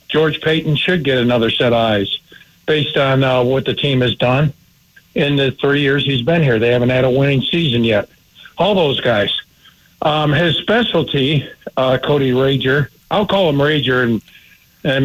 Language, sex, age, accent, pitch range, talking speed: English, male, 60-79, American, 125-150 Hz, 180 wpm